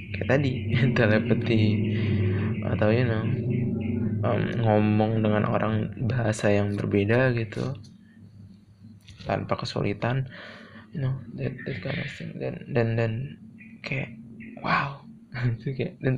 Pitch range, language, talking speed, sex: 110-165 Hz, Indonesian, 85 wpm, male